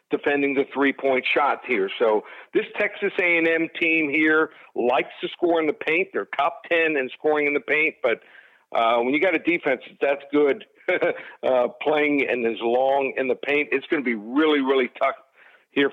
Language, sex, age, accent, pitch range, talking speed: English, male, 60-79, American, 135-155 Hz, 190 wpm